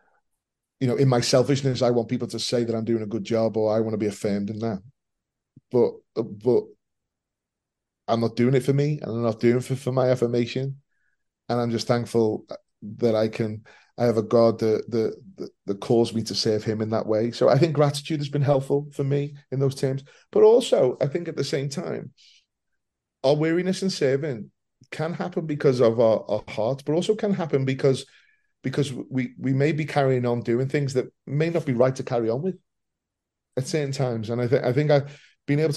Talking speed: 215 wpm